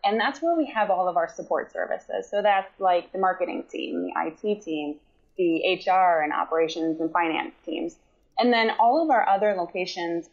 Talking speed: 190 wpm